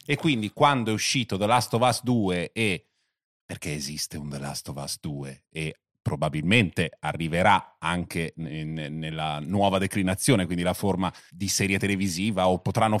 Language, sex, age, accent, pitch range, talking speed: Italian, male, 30-49, native, 100-135 Hz, 155 wpm